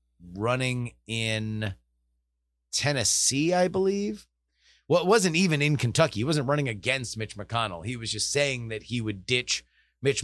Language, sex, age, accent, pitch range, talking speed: English, male, 30-49, American, 95-130 Hz, 150 wpm